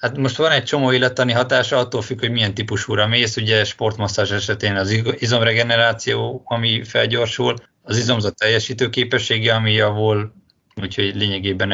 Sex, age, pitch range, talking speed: male, 20-39, 100-115 Hz, 145 wpm